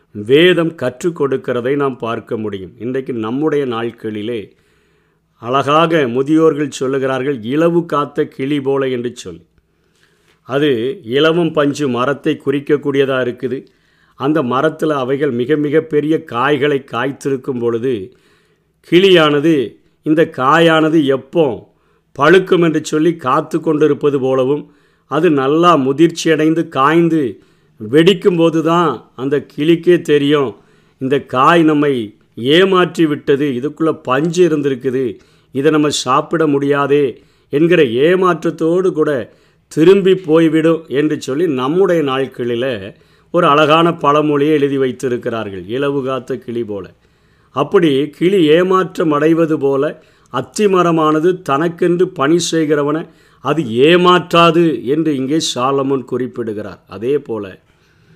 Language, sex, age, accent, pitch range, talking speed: Tamil, male, 50-69, native, 135-165 Hz, 100 wpm